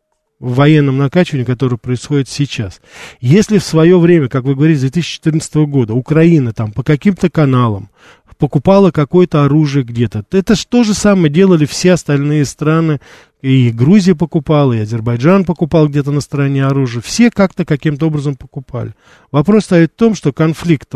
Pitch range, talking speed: 130-165 Hz, 155 wpm